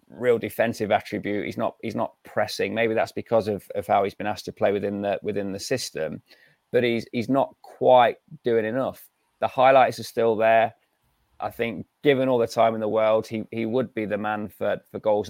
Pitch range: 105-120 Hz